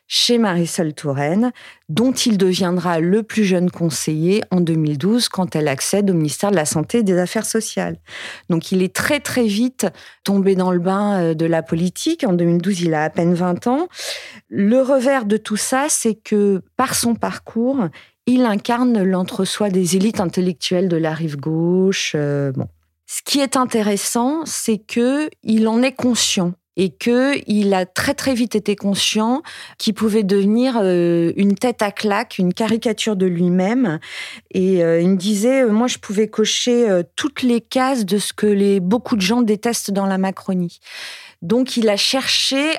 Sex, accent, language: female, French, French